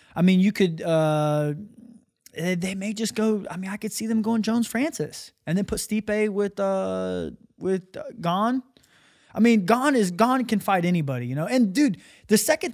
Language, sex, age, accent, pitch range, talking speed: English, male, 20-39, American, 150-220 Hz, 195 wpm